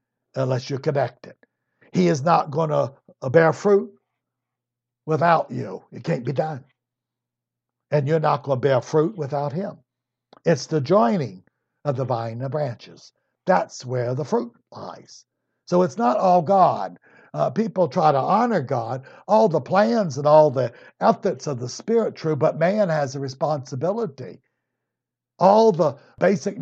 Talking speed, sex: 155 wpm, male